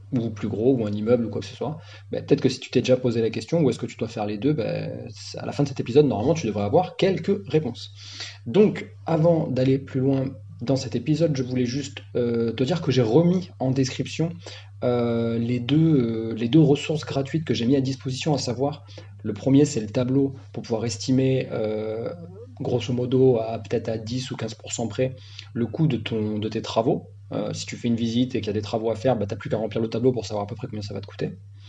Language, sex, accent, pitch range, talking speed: French, male, French, 105-130 Hz, 250 wpm